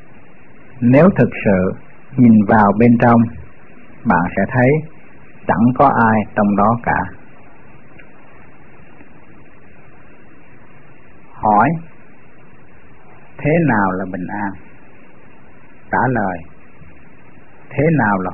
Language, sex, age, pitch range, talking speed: Vietnamese, male, 60-79, 105-130 Hz, 90 wpm